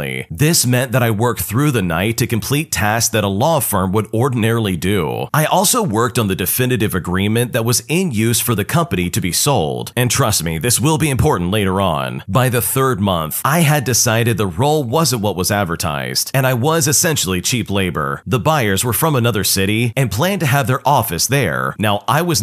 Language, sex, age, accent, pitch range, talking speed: English, male, 40-59, American, 100-135 Hz, 210 wpm